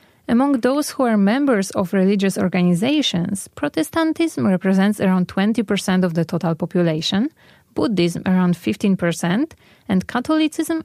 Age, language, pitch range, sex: 30-49, Korean, 185-245 Hz, female